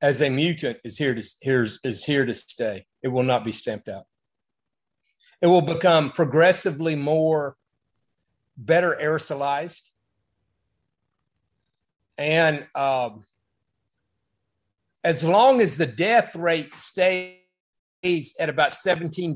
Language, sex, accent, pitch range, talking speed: English, male, American, 140-175 Hz, 110 wpm